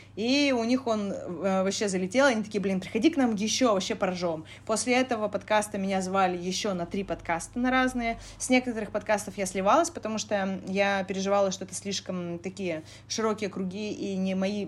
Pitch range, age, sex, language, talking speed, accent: 190-225 Hz, 20-39, female, Russian, 180 wpm, native